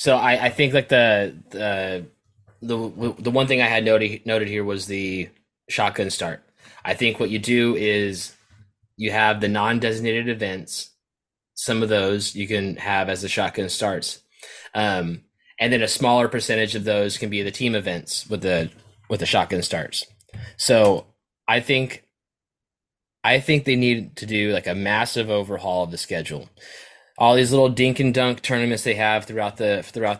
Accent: American